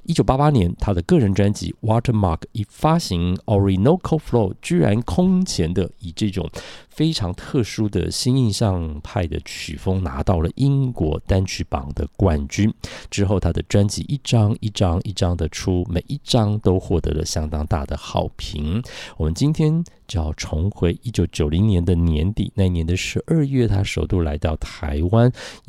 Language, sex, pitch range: Chinese, male, 85-120 Hz